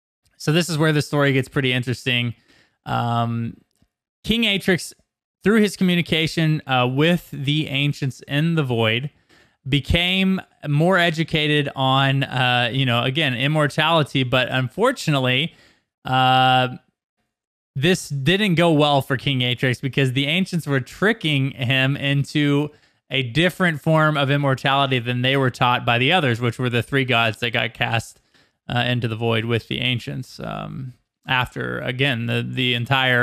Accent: American